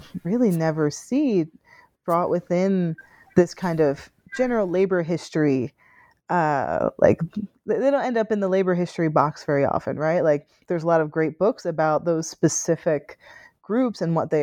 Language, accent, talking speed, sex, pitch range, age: English, American, 160 wpm, female, 155-195 Hz, 30-49